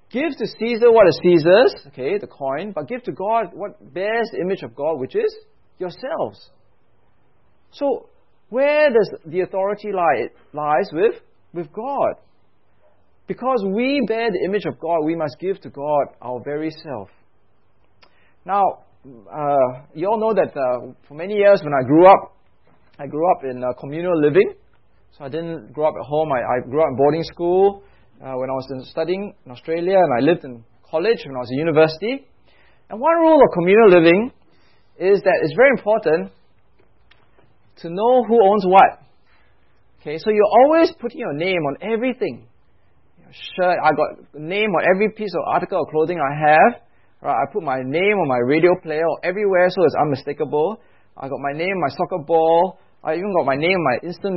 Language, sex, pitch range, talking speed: English, male, 150-215 Hz, 190 wpm